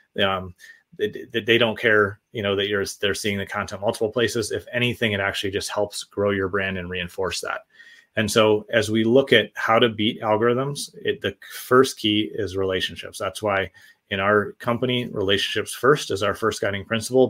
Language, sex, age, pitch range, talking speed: English, male, 30-49, 105-125 Hz, 190 wpm